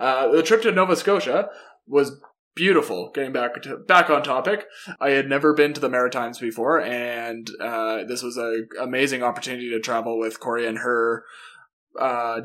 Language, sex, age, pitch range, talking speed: English, male, 20-39, 115-135 Hz, 175 wpm